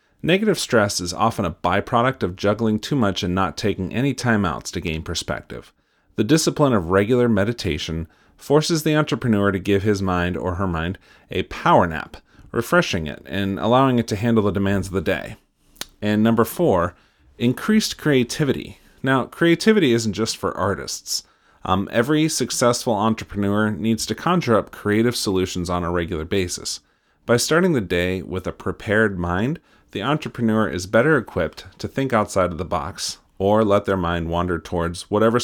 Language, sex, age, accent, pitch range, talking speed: English, male, 40-59, American, 90-115 Hz, 170 wpm